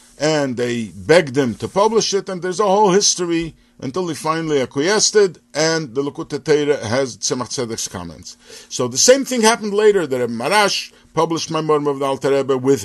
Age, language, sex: 50-69, English, male